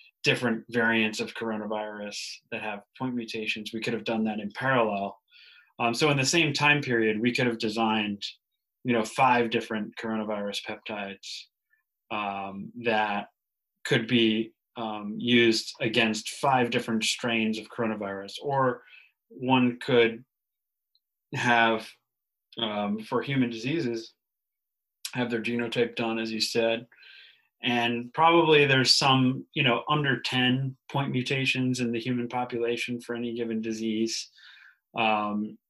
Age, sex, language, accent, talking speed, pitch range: 30-49, male, English, American, 130 wpm, 110-125 Hz